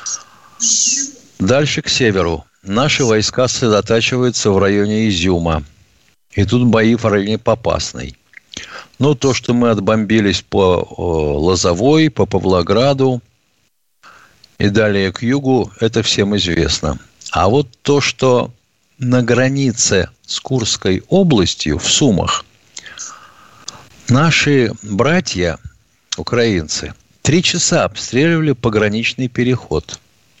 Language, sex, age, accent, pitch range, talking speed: Russian, male, 60-79, native, 100-140 Hz, 100 wpm